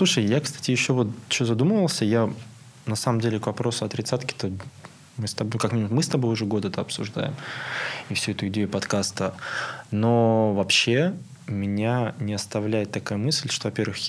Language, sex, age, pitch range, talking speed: Russian, male, 20-39, 105-130 Hz, 170 wpm